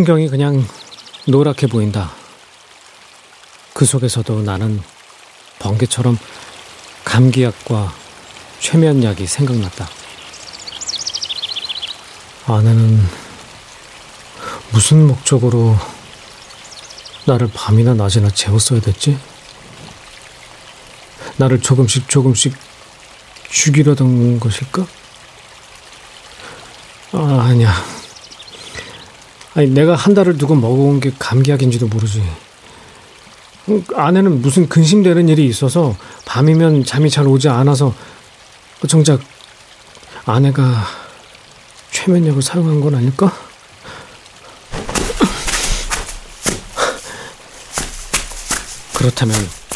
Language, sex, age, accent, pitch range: Korean, male, 40-59, native, 110-145 Hz